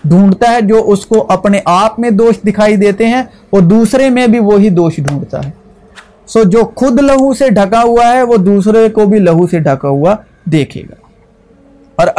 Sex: male